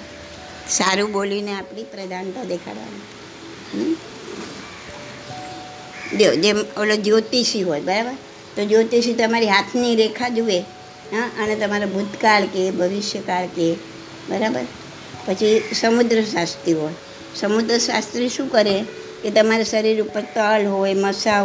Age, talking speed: 60-79, 105 wpm